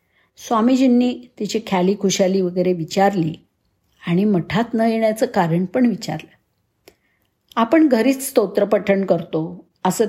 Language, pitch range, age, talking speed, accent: Marathi, 185-245 Hz, 50-69, 105 wpm, native